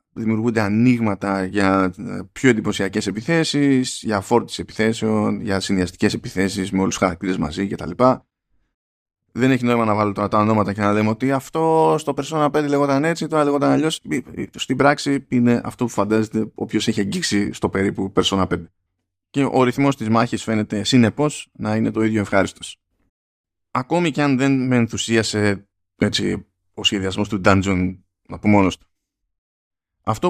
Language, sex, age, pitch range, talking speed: Greek, male, 20-39, 95-130 Hz, 160 wpm